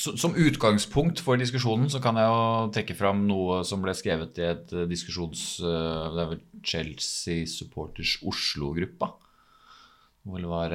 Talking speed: 130 wpm